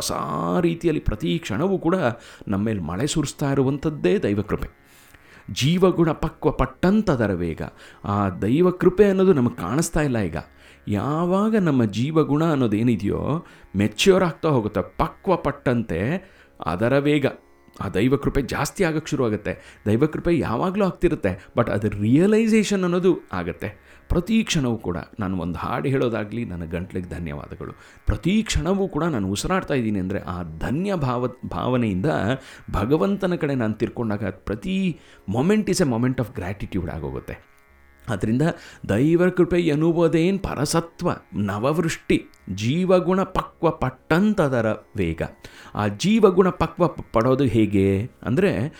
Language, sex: Kannada, male